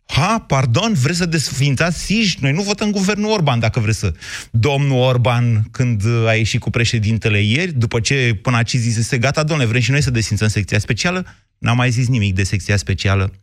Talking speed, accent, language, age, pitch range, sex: 195 wpm, native, Romanian, 30-49, 105-130 Hz, male